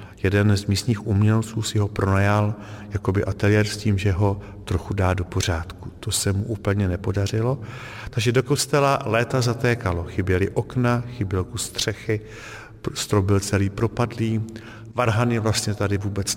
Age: 50-69